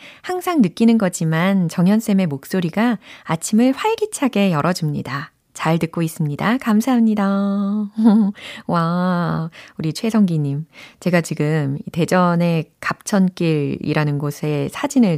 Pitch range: 160-220 Hz